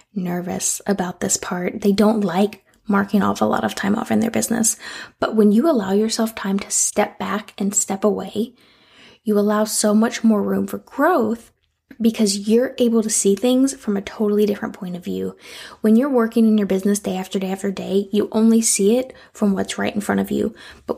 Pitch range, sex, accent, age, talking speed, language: 190-220 Hz, female, American, 10-29, 210 wpm, English